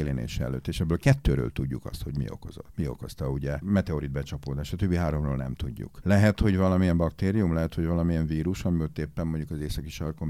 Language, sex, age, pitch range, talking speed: English, male, 50-69, 70-90 Hz, 205 wpm